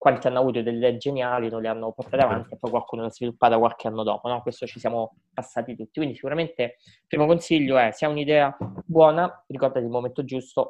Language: Italian